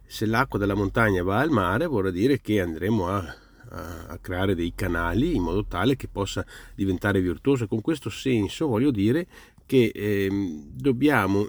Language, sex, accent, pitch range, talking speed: Italian, male, native, 100-125 Hz, 165 wpm